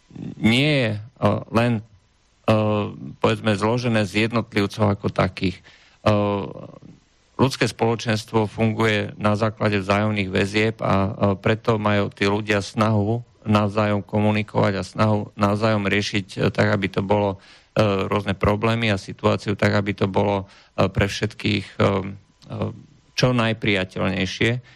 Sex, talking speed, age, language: male, 130 wpm, 50-69, Czech